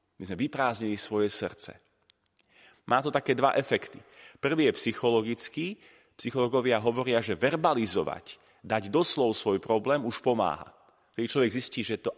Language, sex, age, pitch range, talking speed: Slovak, male, 30-49, 110-155 Hz, 140 wpm